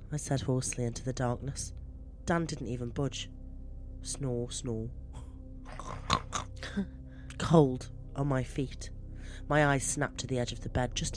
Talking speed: 140 wpm